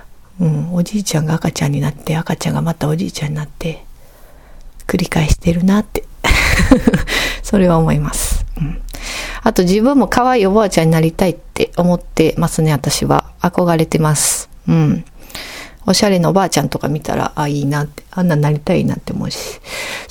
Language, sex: Japanese, female